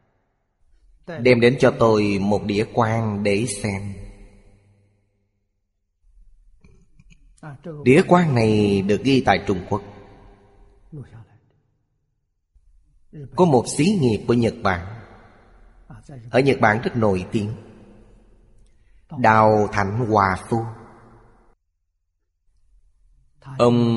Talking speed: 90 wpm